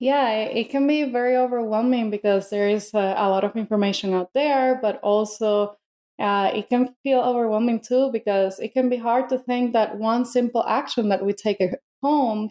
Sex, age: female, 20-39